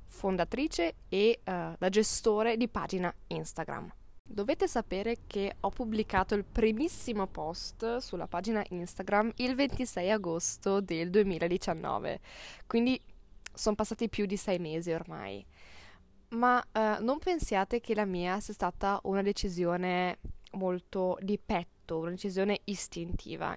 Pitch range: 190-230 Hz